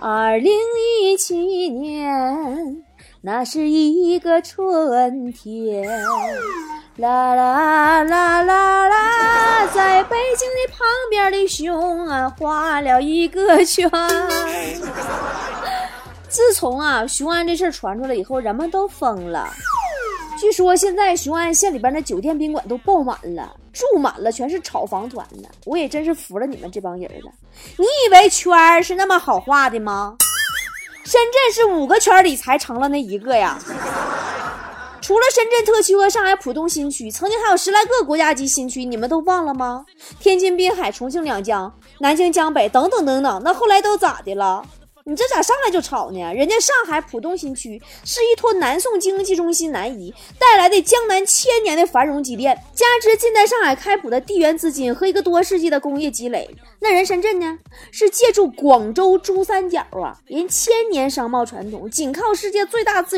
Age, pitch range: 20-39, 275-395 Hz